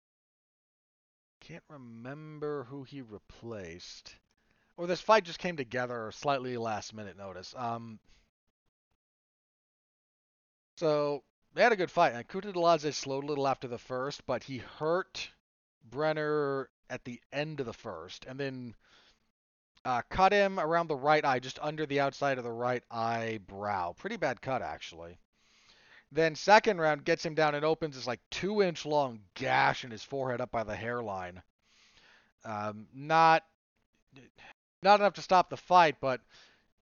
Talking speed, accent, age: 145 wpm, American, 40-59